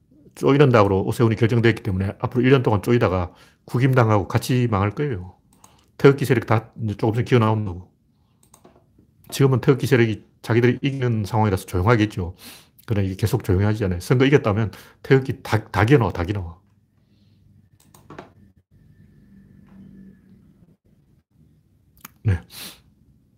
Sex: male